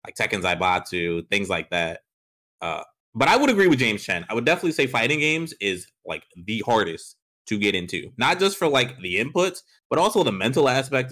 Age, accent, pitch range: 30-49, American, 120-160 Hz